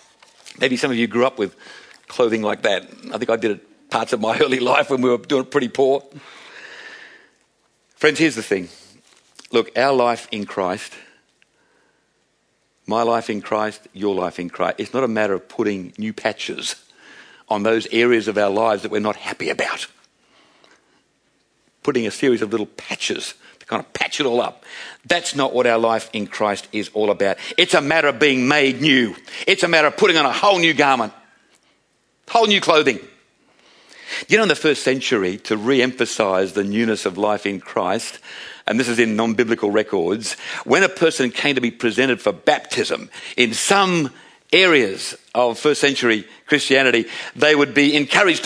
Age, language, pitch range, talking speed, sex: 50-69, English, 110-155 Hz, 180 wpm, male